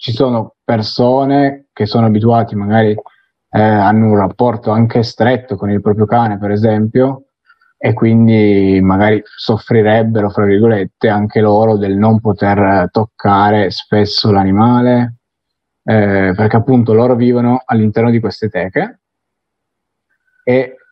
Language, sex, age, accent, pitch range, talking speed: Italian, male, 20-39, native, 105-120 Hz, 125 wpm